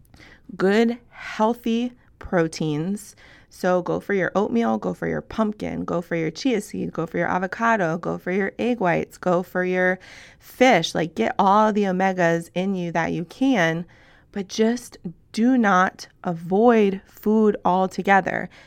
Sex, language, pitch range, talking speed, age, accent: female, English, 180-235 Hz, 150 wpm, 20-39, American